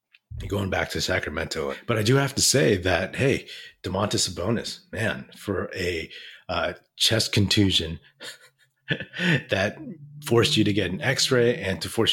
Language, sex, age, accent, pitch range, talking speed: English, male, 30-49, American, 85-110 Hz, 155 wpm